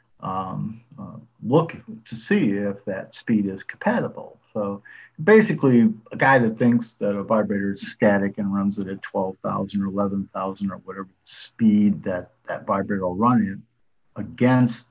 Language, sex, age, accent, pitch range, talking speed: English, male, 50-69, American, 100-125 Hz, 155 wpm